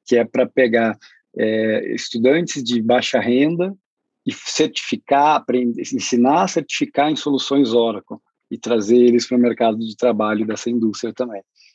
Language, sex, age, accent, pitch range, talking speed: Portuguese, male, 20-39, Brazilian, 110-130 Hz, 140 wpm